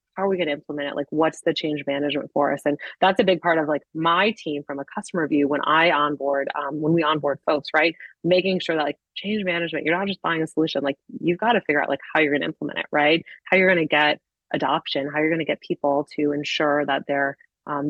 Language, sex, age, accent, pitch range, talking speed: English, female, 20-39, American, 145-175 Hz, 265 wpm